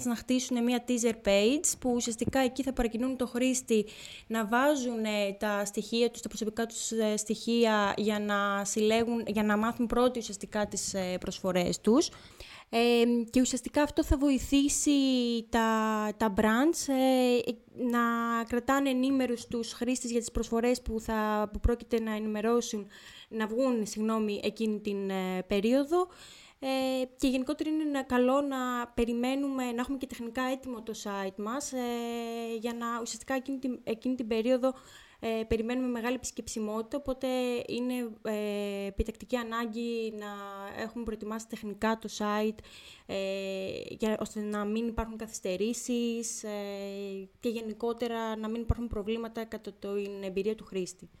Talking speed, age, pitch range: 135 wpm, 20-39, 215-250 Hz